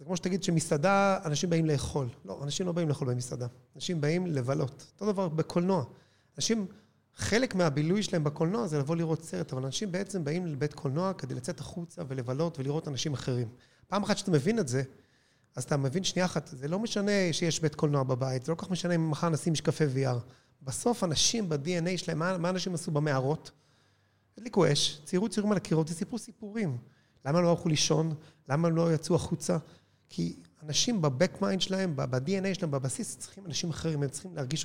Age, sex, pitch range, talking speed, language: 30-49, male, 145-185 Hz, 160 wpm, Hebrew